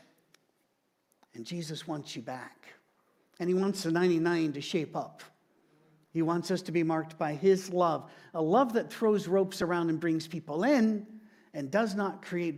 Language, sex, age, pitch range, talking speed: English, male, 50-69, 160-220 Hz, 170 wpm